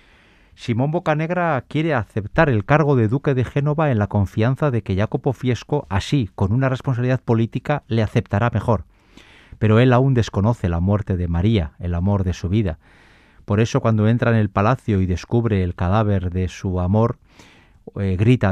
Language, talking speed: Spanish, 175 wpm